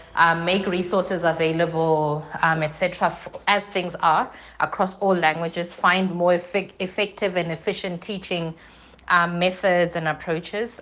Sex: female